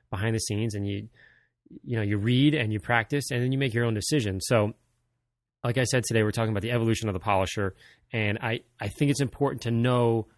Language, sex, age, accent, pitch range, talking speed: English, male, 30-49, American, 100-125 Hz, 230 wpm